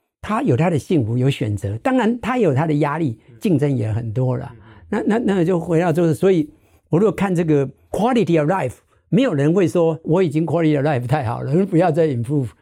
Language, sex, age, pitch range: Chinese, male, 60-79, 125-170 Hz